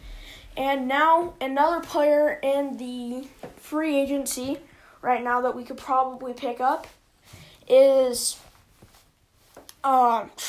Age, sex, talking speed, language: 10-29, female, 105 wpm, English